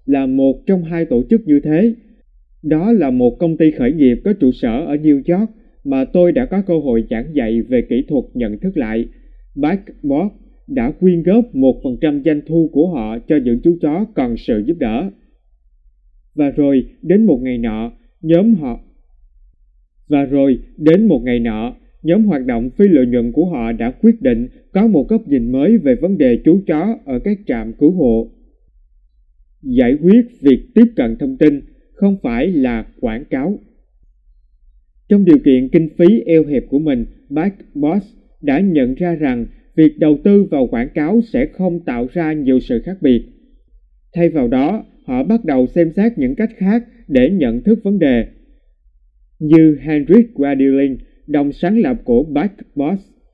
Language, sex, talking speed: Vietnamese, male, 175 wpm